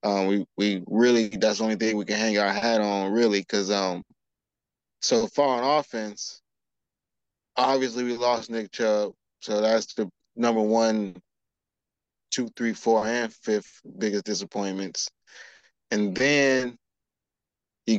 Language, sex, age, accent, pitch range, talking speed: English, male, 20-39, American, 105-120 Hz, 135 wpm